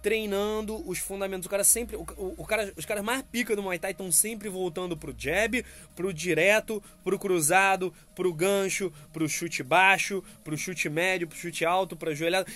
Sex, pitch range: male, 160-205 Hz